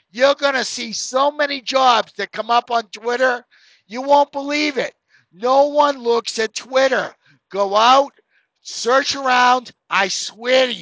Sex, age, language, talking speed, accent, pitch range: male, 50-69, English, 155 wpm, American, 215-265 Hz